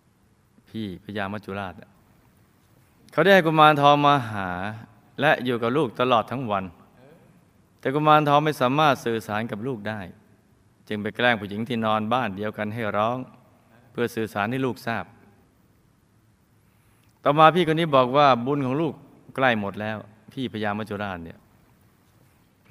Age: 20-39